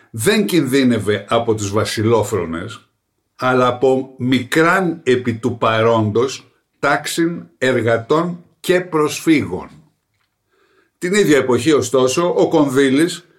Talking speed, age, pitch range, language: 95 wpm, 60-79, 125-175 Hz, Greek